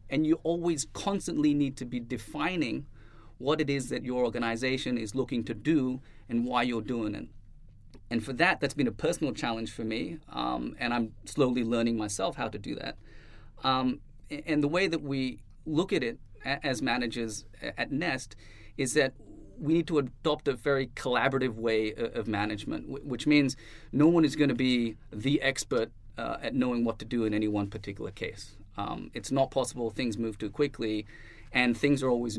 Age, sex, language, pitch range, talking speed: 30-49, male, English, 110-145 Hz, 185 wpm